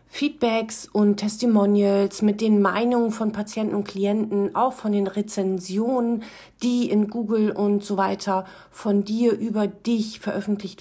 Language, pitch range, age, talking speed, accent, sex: German, 180-220 Hz, 40-59, 140 wpm, German, female